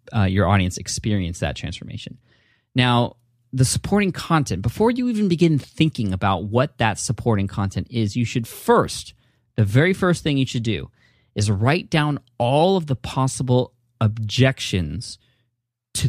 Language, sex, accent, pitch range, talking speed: English, male, American, 105-135 Hz, 150 wpm